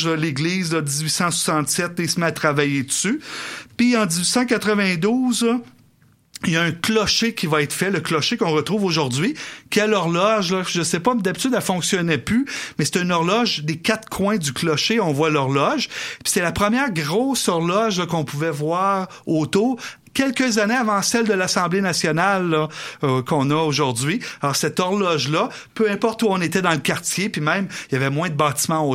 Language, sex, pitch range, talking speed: French, male, 155-205 Hz, 195 wpm